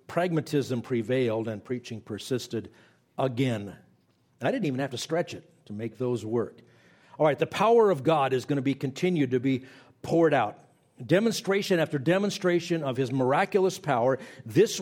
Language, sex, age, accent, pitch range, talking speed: English, male, 50-69, American, 130-165 Hz, 160 wpm